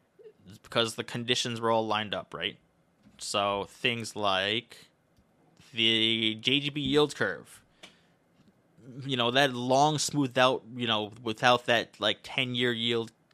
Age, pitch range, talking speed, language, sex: 20-39, 115-145 Hz, 125 wpm, English, male